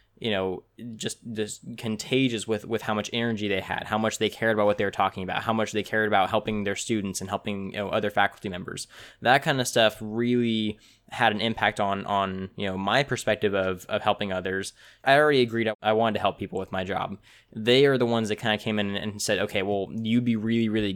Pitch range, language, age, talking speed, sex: 105-120 Hz, English, 10-29, 240 wpm, male